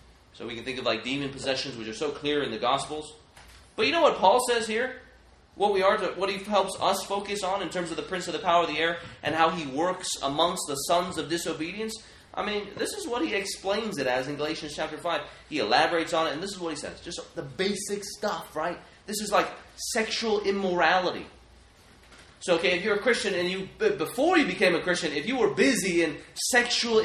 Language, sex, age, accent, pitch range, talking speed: English, male, 30-49, American, 150-220 Hz, 230 wpm